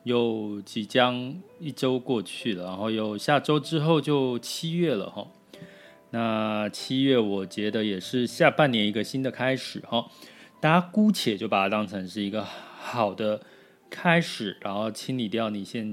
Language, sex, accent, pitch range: Chinese, male, native, 105-140 Hz